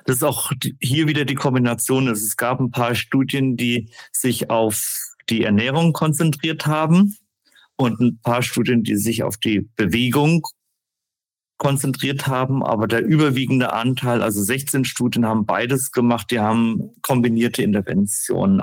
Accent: German